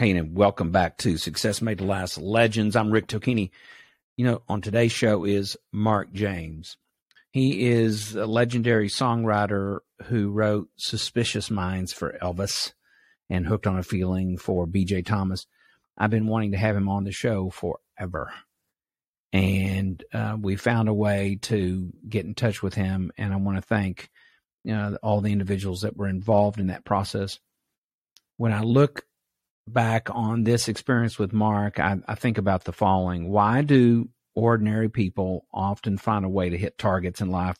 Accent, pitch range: American, 95-110 Hz